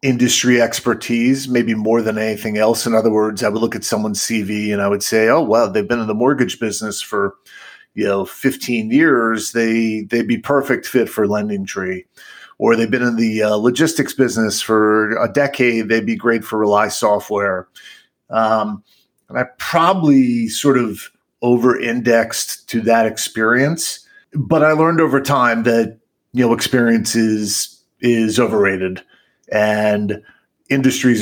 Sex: male